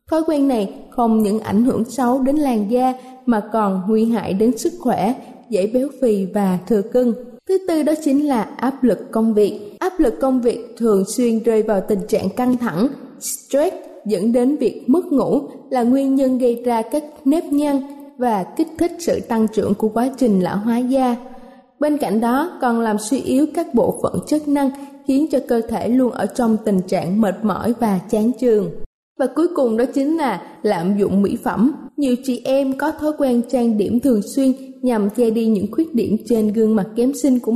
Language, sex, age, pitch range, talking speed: Vietnamese, female, 20-39, 220-275 Hz, 205 wpm